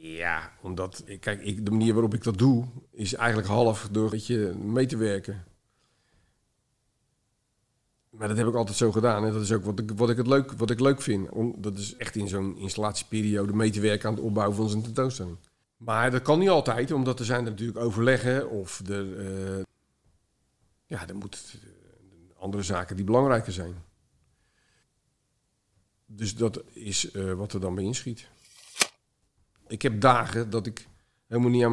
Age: 50-69